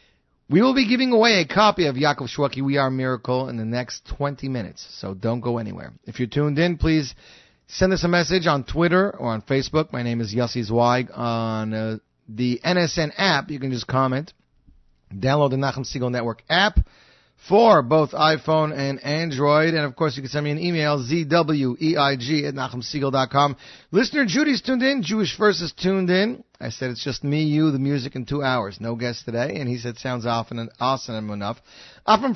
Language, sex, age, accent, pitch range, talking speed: English, male, 40-59, American, 130-180 Hz, 195 wpm